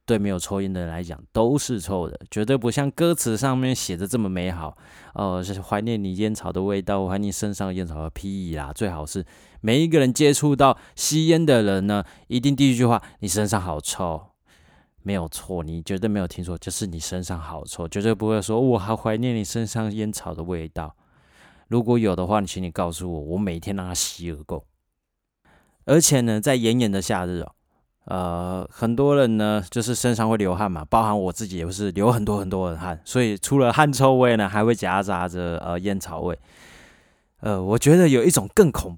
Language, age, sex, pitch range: Chinese, 20-39, male, 90-115 Hz